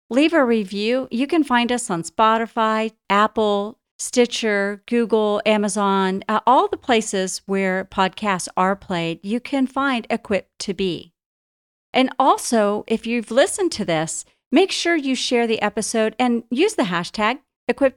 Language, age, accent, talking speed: English, 40-59, American, 150 wpm